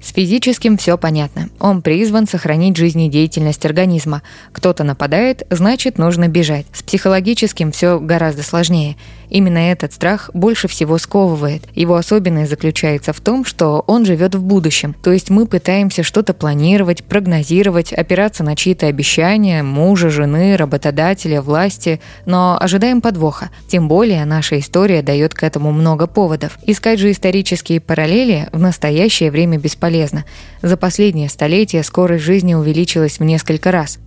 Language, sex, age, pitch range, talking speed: Russian, female, 20-39, 155-190 Hz, 140 wpm